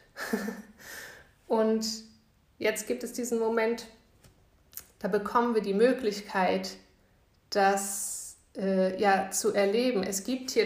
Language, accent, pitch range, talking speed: German, German, 195-235 Hz, 105 wpm